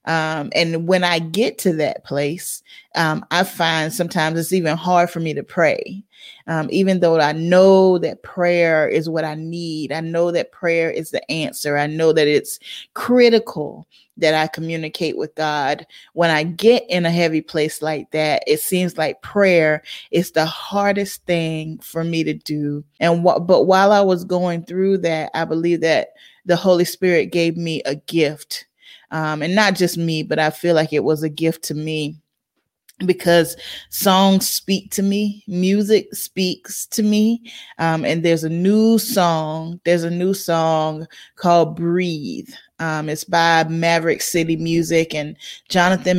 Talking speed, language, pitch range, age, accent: 170 wpm, English, 160-185 Hz, 30-49, American